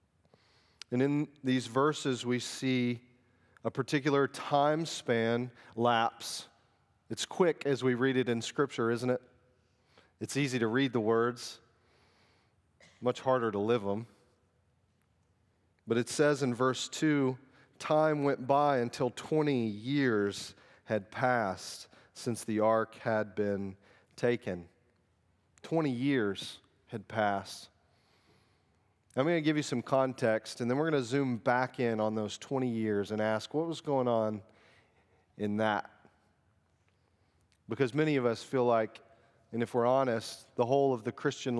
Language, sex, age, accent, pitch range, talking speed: English, male, 40-59, American, 105-130 Hz, 140 wpm